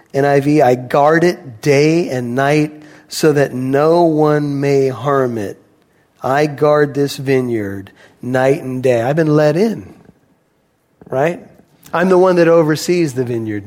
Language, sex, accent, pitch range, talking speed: English, male, American, 145-190 Hz, 145 wpm